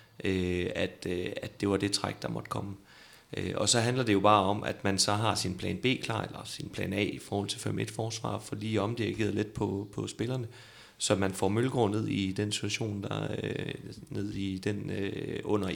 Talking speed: 200 wpm